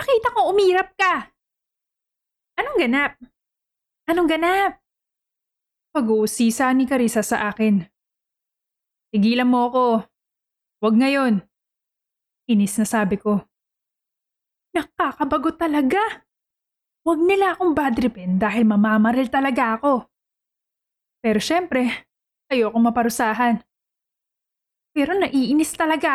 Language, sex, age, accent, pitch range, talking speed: Filipino, female, 20-39, native, 210-275 Hz, 90 wpm